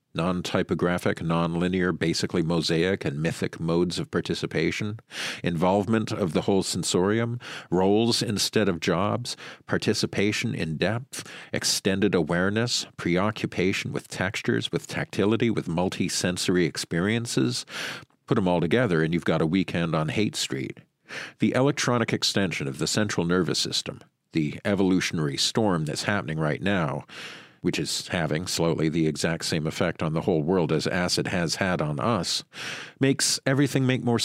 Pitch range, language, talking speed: 85-120 Hz, English, 140 wpm